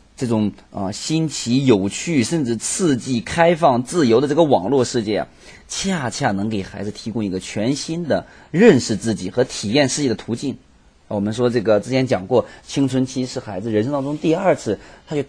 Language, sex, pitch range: Chinese, male, 100-140 Hz